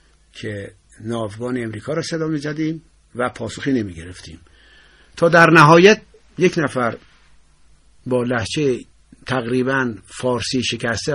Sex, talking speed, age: male, 110 wpm, 60-79